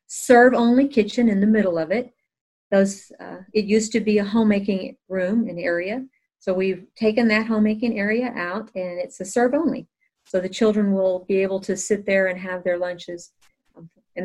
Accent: American